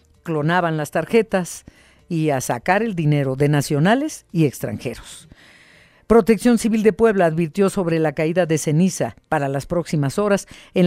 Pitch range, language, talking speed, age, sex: 150-195 Hz, Spanish, 150 wpm, 50-69, female